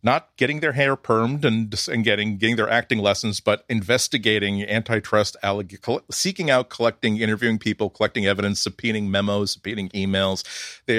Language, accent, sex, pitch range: English, American, male, 100-120 Hz